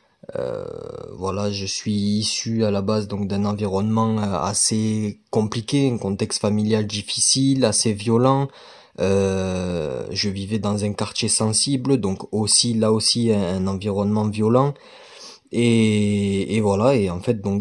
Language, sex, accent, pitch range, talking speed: French, male, French, 100-125 Hz, 140 wpm